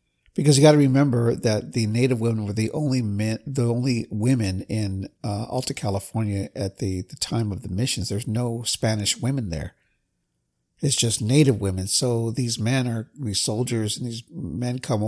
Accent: American